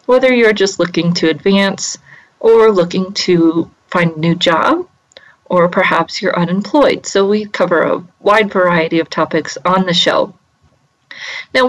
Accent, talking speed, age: American, 150 wpm, 40-59